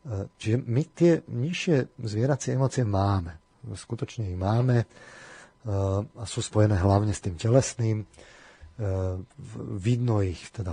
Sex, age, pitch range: male, 30-49, 95-115 Hz